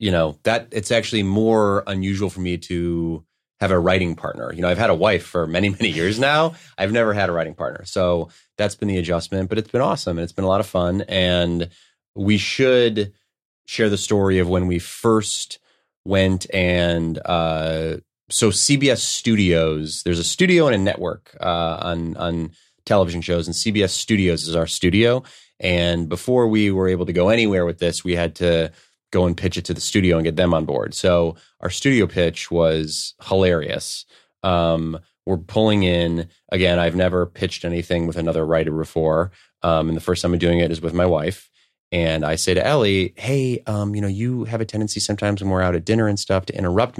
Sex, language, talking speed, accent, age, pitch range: male, English, 205 wpm, American, 30-49, 85-105 Hz